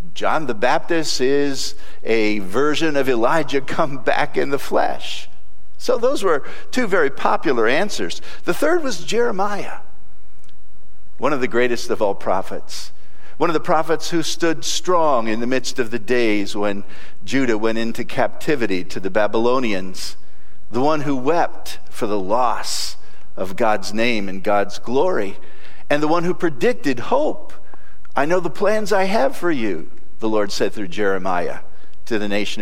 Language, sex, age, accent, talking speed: English, male, 50-69, American, 160 wpm